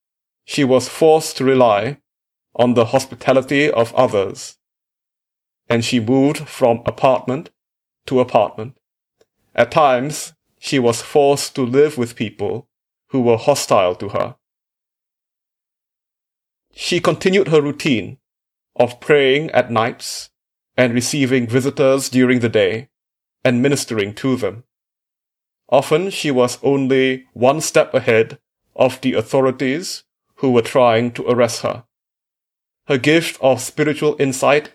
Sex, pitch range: male, 120-145 Hz